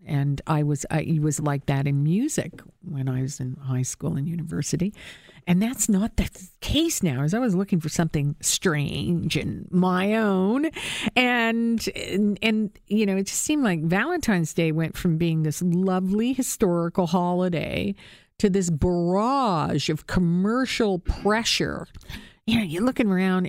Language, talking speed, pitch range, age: English, 160 wpm, 150-200 Hz, 50-69